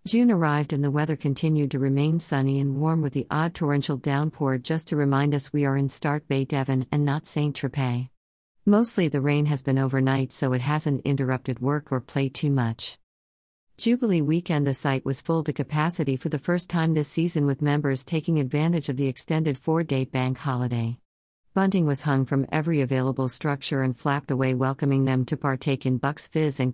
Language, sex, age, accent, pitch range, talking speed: English, female, 50-69, American, 130-155 Hz, 195 wpm